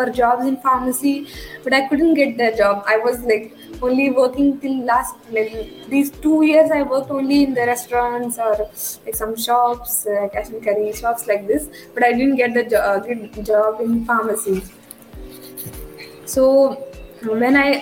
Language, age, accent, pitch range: English, 20-39, Indian, 215-265 Hz